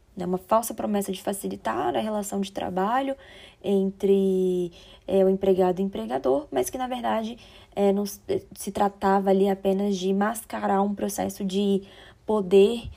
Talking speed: 150 wpm